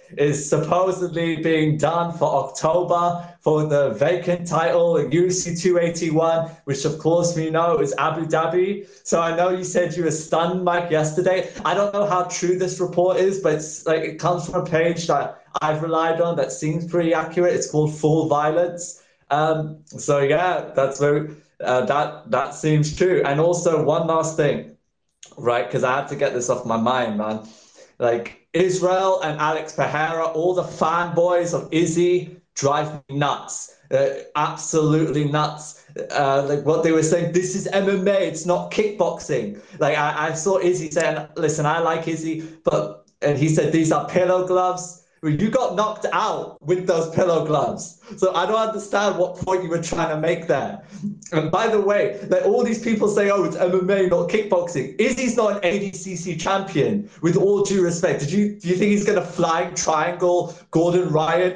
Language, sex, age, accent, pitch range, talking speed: English, male, 20-39, British, 155-180 Hz, 180 wpm